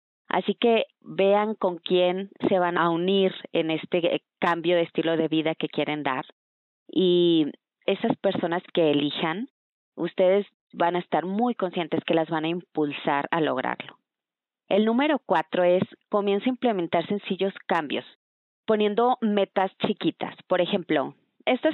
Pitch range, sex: 165-200 Hz, female